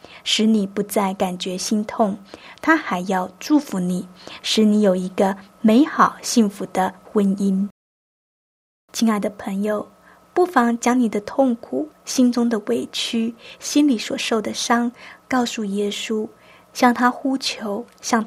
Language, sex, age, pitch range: Chinese, female, 20-39, 205-245 Hz